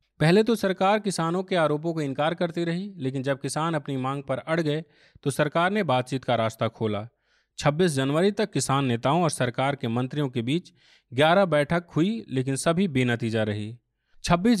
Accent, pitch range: native, 120-165 Hz